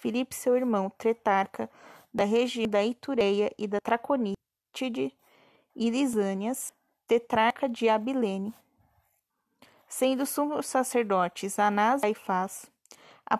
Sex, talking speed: female, 105 wpm